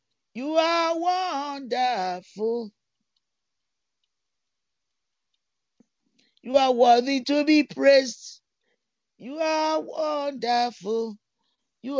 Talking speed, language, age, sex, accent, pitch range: 65 wpm, English, 50-69, male, Nigerian, 185-255 Hz